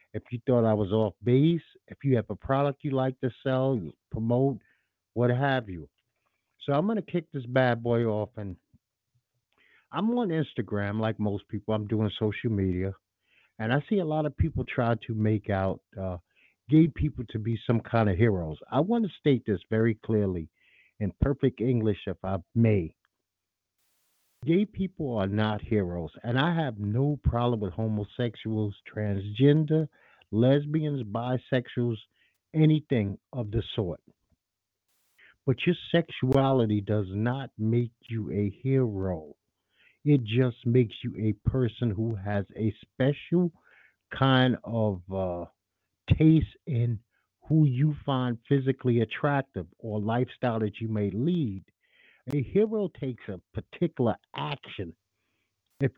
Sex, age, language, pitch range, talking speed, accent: male, 50-69, English, 105-135 Hz, 145 wpm, American